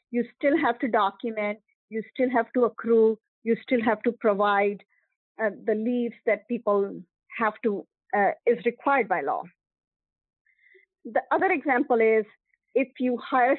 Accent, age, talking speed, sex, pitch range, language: Indian, 50-69, 150 wpm, female, 210-255 Hz, English